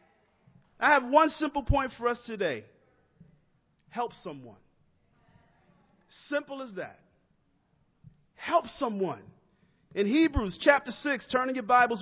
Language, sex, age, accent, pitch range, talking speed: English, male, 40-59, American, 215-280 Hz, 115 wpm